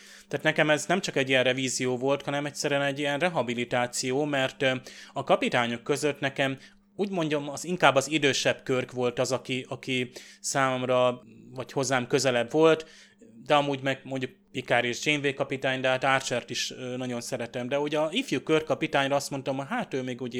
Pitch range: 125-145 Hz